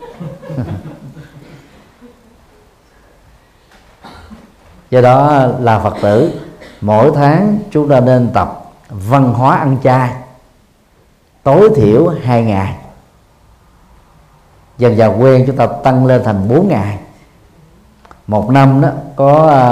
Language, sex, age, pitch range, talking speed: Vietnamese, male, 50-69, 105-140 Hz, 100 wpm